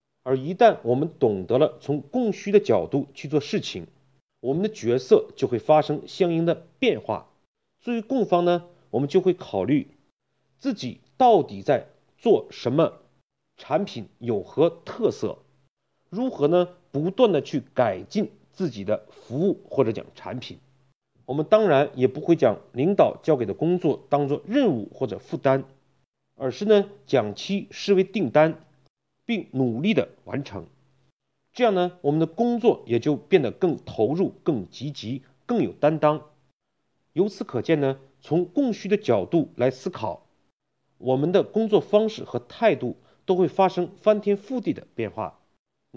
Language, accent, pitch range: Chinese, native, 135-200 Hz